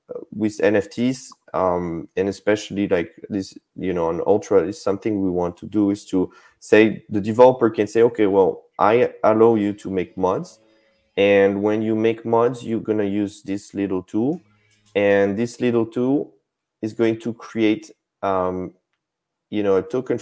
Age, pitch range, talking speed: 30-49, 95-115 Hz, 170 wpm